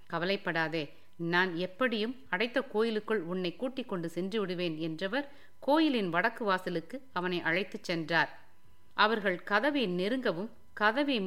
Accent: native